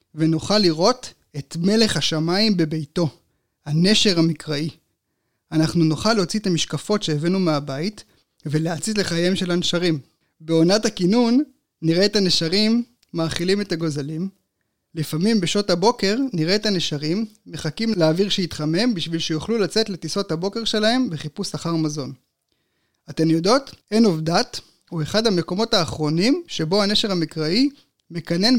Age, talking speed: 20-39, 120 wpm